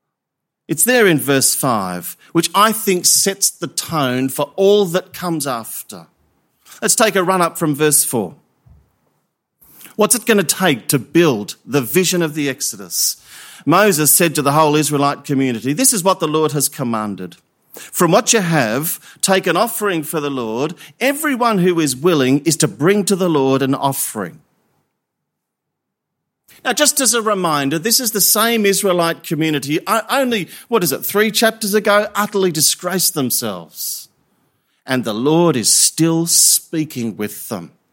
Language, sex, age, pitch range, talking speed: English, male, 40-59, 140-195 Hz, 160 wpm